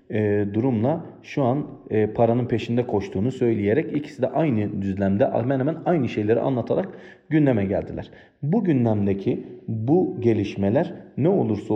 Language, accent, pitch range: Turkish, native, 95-120 Hz